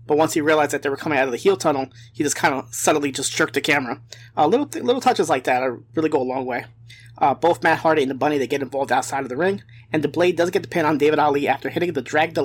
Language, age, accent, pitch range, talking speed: English, 20-39, American, 125-165 Hz, 310 wpm